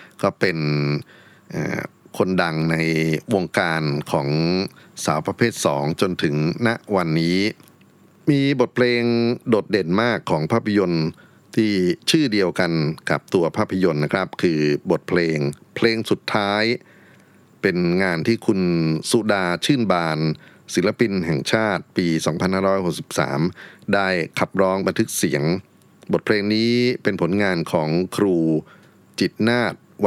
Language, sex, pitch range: Thai, male, 80-105 Hz